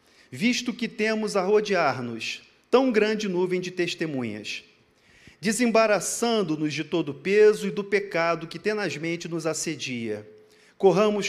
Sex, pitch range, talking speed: male, 150-210 Hz, 120 wpm